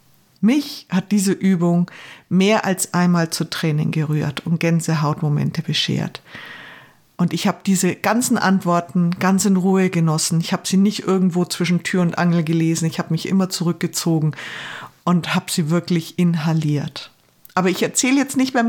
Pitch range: 165-200 Hz